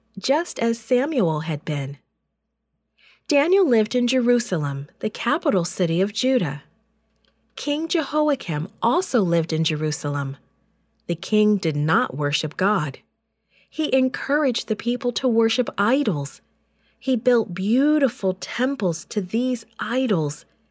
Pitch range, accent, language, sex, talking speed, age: 175-250 Hz, American, English, female, 115 wpm, 40-59